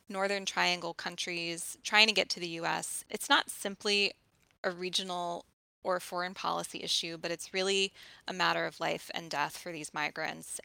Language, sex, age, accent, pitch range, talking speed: English, female, 20-39, American, 165-190 Hz, 170 wpm